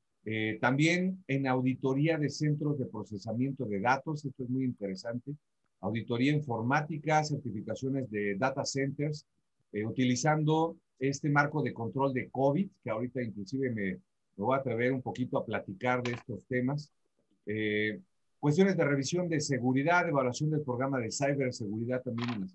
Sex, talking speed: male, 155 wpm